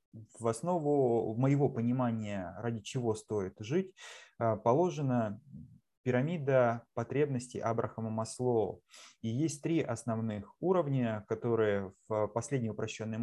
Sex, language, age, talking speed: male, Russian, 20-39, 100 wpm